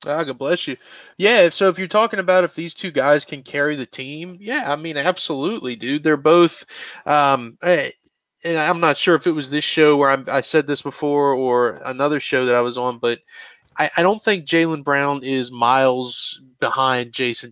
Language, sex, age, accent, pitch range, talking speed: English, male, 20-39, American, 125-150 Hz, 205 wpm